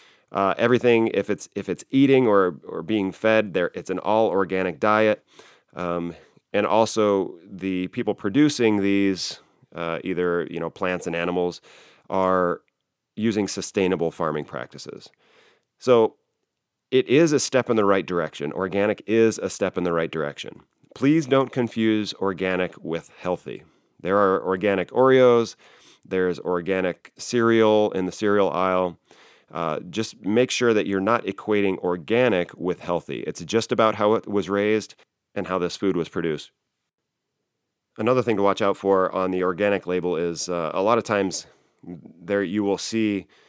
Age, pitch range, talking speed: 30-49, 90-110 Hz, 155 wpm